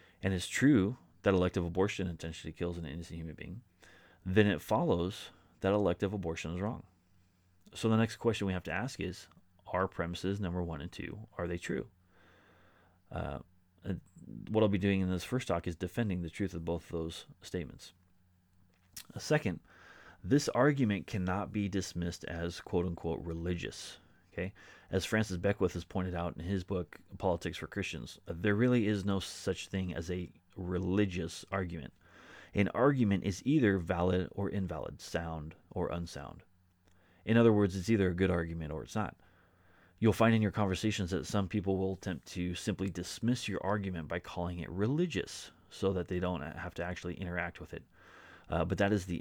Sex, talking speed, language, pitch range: male, 175 wpm, English, 85-100 Hz